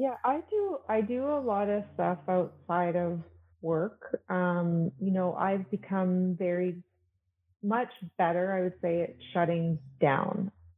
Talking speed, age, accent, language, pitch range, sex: 145 wpm, 30-49, American, English, 165-190 Hz, female